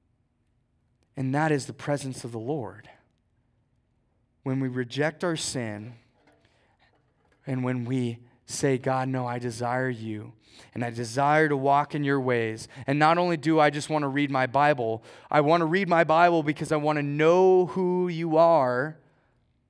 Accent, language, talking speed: American, English, 170 wpm